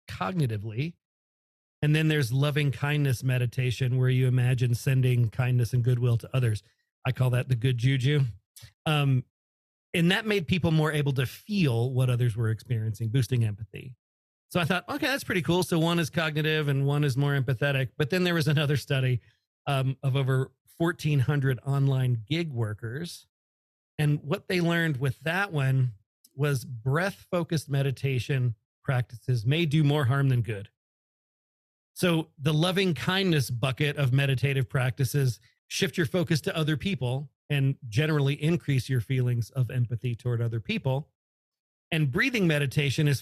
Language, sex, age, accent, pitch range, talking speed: English, male, 40-59, American, 125-155 Hz, 155 wpm